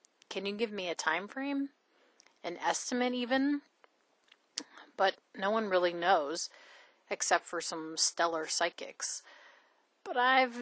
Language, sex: English, female